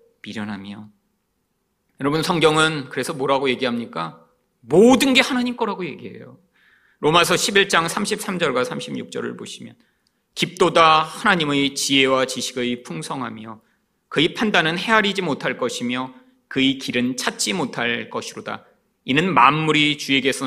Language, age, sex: Korean, 30-49, male